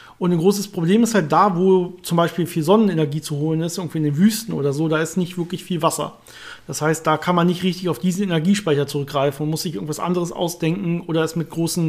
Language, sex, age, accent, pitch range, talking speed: German, male, 40-59, German, 155-185 Hz, 240 wpm